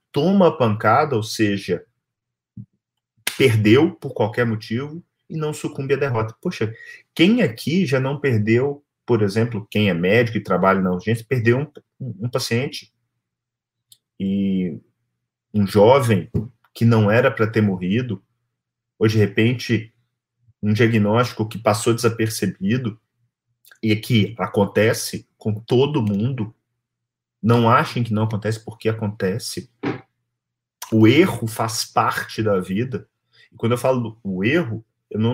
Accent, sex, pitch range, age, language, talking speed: Brazilian, male, 105-120 Hz, 40-59, Portuguese, 130 wpm